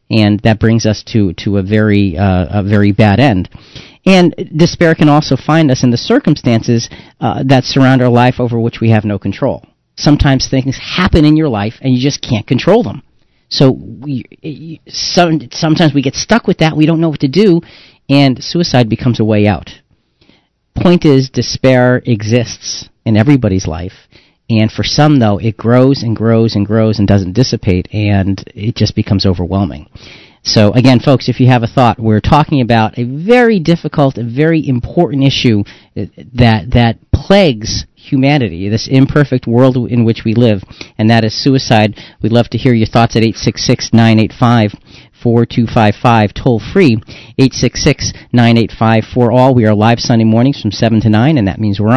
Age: 40-59